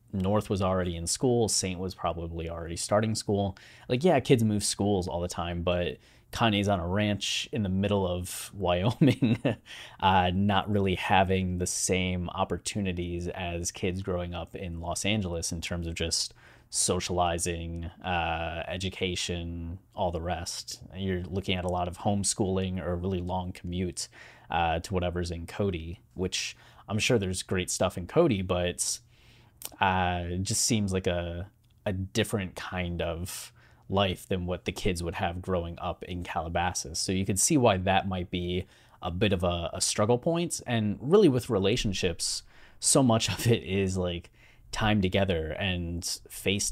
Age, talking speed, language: 20-39, 165 wpm, English